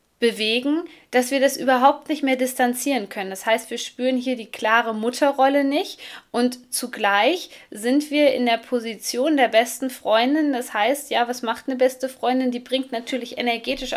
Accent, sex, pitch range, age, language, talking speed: German, female, 225-270 Hz, 20-39, German, 170 wpm